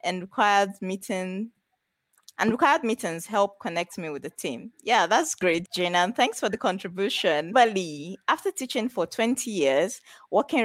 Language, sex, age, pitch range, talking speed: English, female, 20-39, 170-220 Hz, 165 wpm